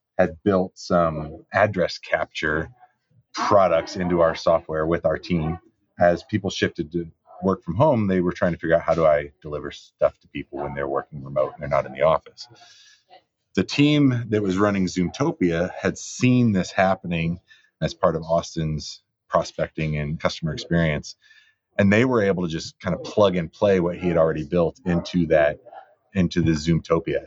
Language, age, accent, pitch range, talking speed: English, 30-49, American, 80-100 Hz, 180 wpm